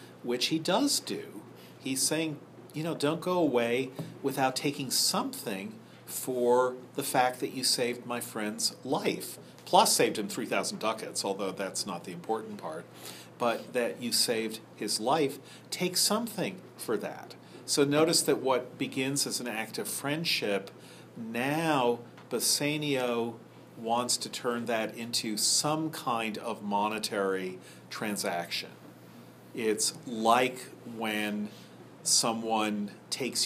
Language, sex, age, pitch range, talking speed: English, male, 40-59, 105-135 Hz, 125 wpm